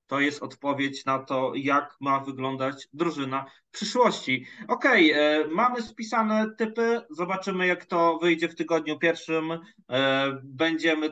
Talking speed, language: 125 wpm, Polish